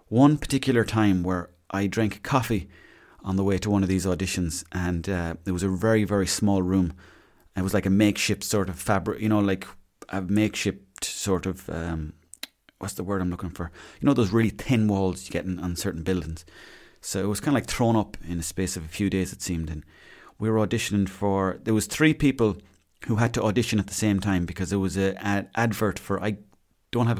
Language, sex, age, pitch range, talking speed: English, male, 30-49, 90-110 Hz, 225 wpm